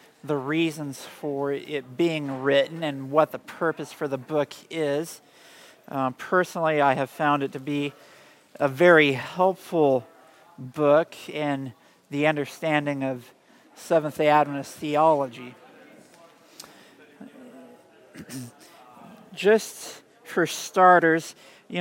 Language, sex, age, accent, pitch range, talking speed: English, male, 50-69, American, 140-160 Hz, 100 wpm